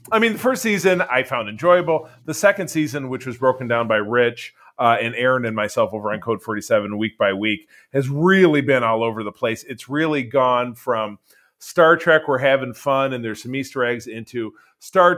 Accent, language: American, English